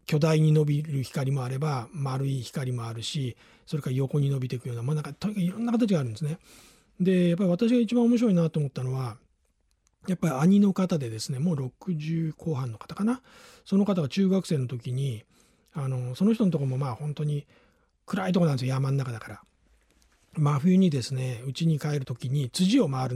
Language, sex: Japanese, male